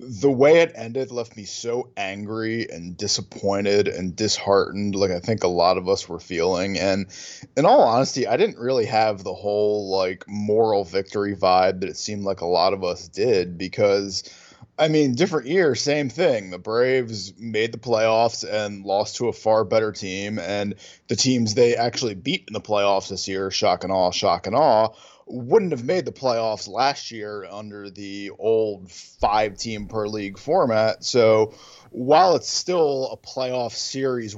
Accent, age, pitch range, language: American, 20-39, 100-115 Hz, English